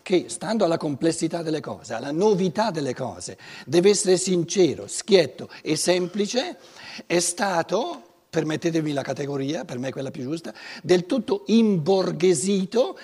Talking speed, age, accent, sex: 140 wpm, 60-79, native, male